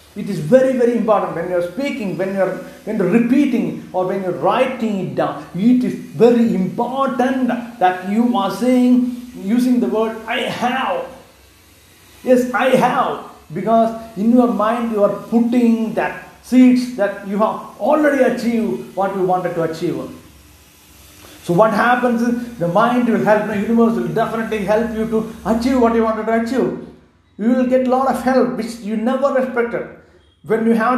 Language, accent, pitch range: English, Indian, 200-245 Hz